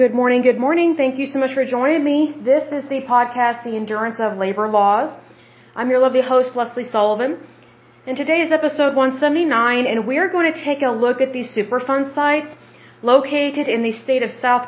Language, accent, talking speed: Spanish, American, 195 wpm